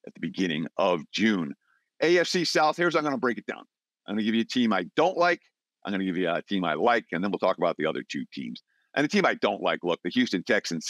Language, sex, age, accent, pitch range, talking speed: English, male, 50-69, American, 100-130 Hz, 285 wpm